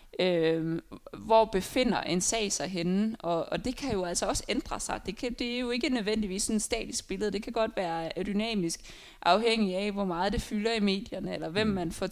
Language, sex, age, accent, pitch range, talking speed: Danish, female, 20-39, native, 175-215 Hz, 220 wpm